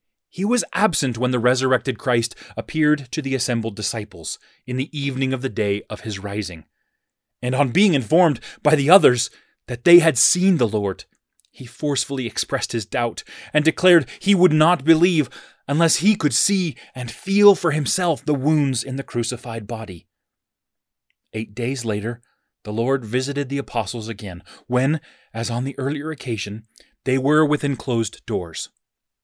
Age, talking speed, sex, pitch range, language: 30-49, 160 wpm, male, 110-140 Hz, English